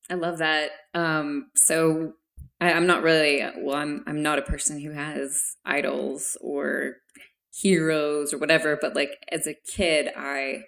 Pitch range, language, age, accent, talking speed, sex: 150-180 Hz, English, 20-39, American, 150 wpm, female